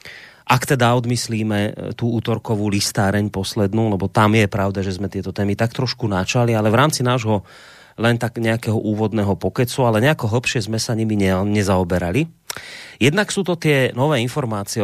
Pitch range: 95-120 Hz